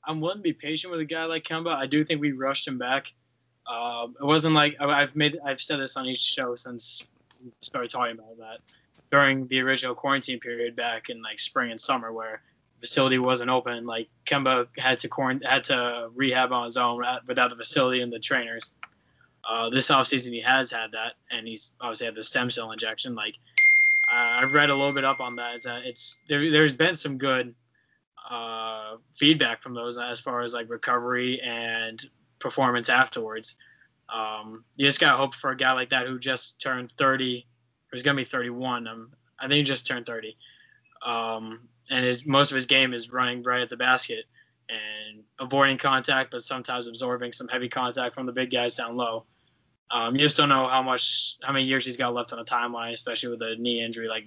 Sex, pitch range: male, 120-135 Hz